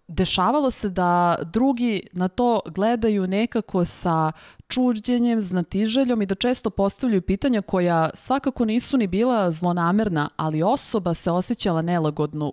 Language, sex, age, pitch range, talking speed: Slovak, female, 30-49, 160-220 Hz, 130 wpm